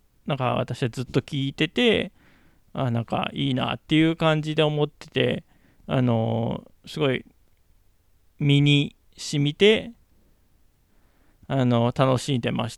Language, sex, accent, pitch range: Japanese, male, native, 115-155 Hz